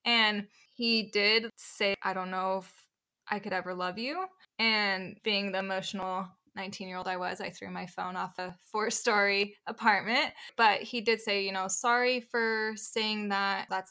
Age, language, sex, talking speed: 20-39, English, female, 170 wpm